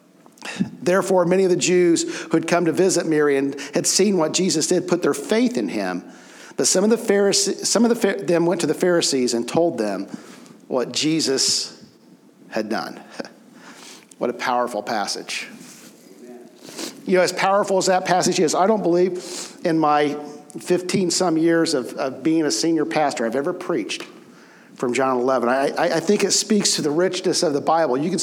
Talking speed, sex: 185 wpm, male